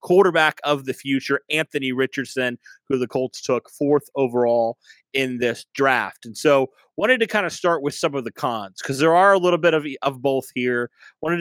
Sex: male